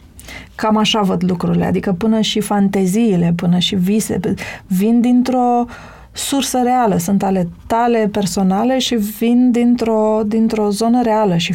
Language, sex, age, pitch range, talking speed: Romanian, female, 30-49, 185-220 Hz, 135 wpm